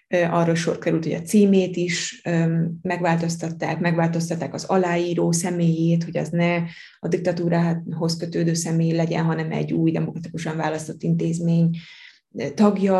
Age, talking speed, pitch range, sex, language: 20-39, 125 wpm, 165-185 Hz, female, Hungarian